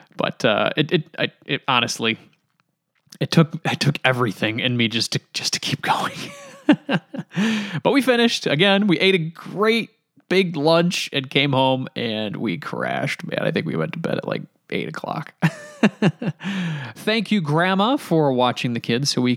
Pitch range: 130-200 Hz